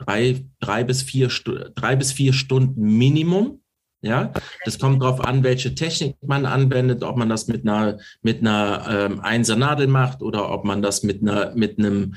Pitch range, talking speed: 110-135 Hz, 175 wpm